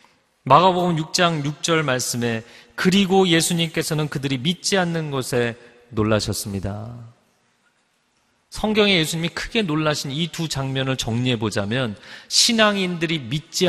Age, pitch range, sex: 30-49, 125-195 Hz, male